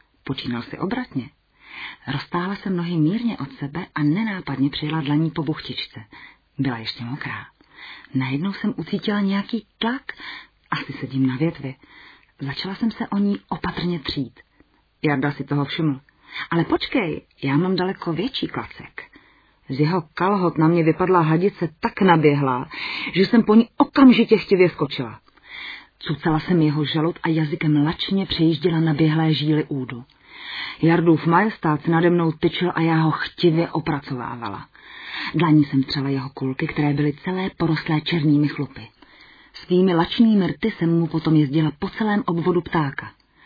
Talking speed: 150 wpm